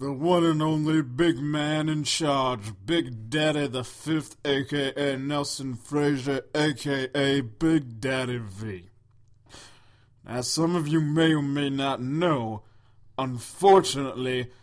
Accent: American